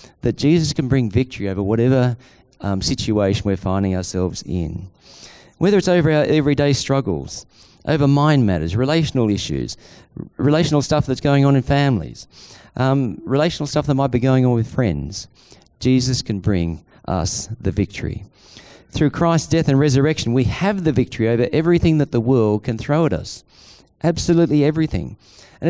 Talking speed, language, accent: 160 wpm, English, Australian